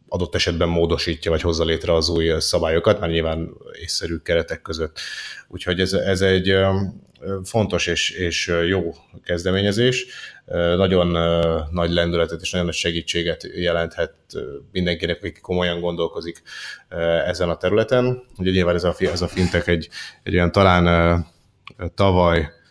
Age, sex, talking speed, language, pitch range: 30-49, male, 130 wpm, Hungarian, 85-95 Hz